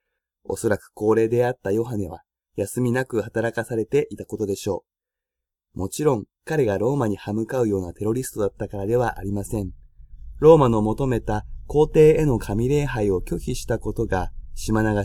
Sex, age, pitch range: male, 20-39, 100-130 Hz